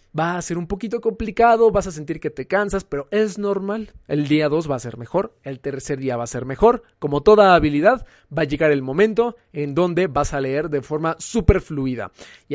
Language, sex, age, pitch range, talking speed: Spanish, male, 30-49, 140-190 Hz, 225 wpm